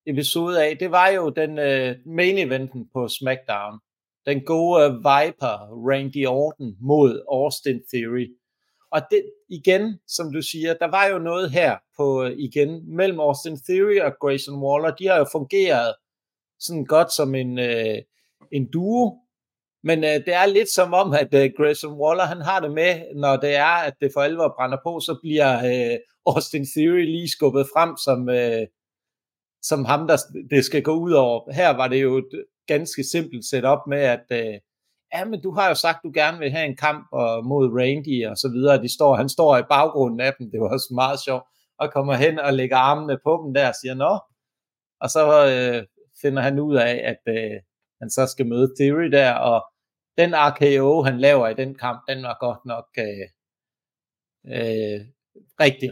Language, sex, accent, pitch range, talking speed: Danish, male, native, 130-160 Hz, 180 wpm